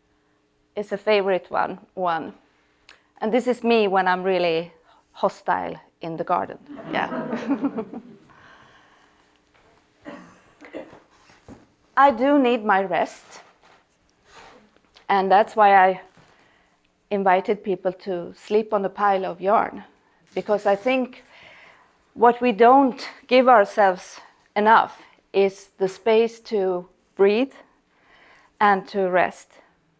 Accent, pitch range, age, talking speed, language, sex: Swedish, 200-245 Hz, 30-49, 105 wpm, English, female